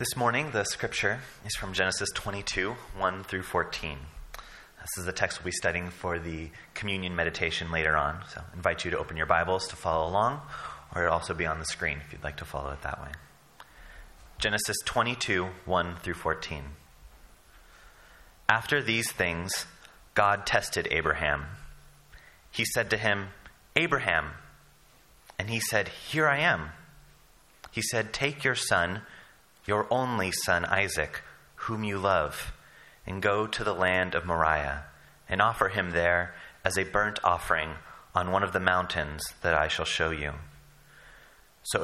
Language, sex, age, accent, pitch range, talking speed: English, male, 30-49, American, 80-105 Hz, 160 wpm